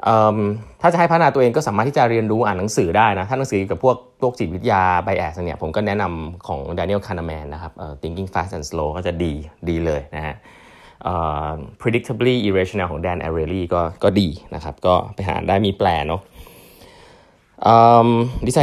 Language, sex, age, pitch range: Thai, male, 20-39, 90-120 Hz